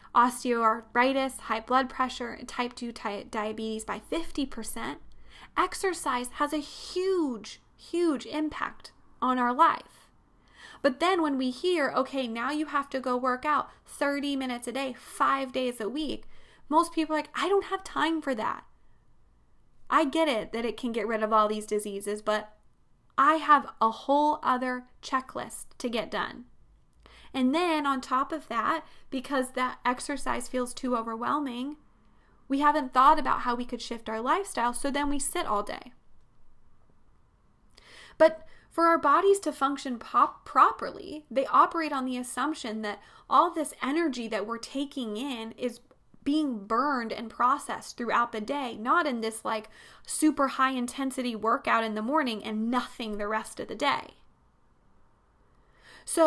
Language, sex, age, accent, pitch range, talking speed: English, female, 10-29, American, 230-300 Hz, 155 wpm